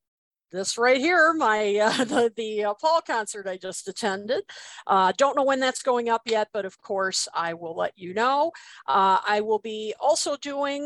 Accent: American